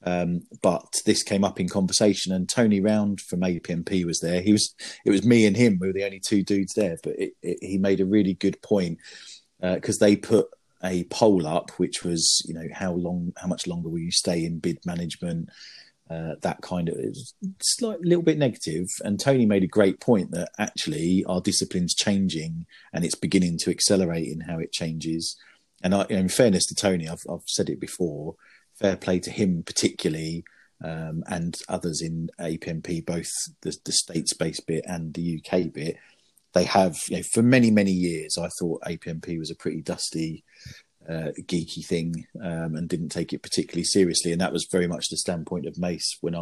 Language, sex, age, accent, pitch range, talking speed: English, male, 30-49, British, 85-105 Hz, 195 wpm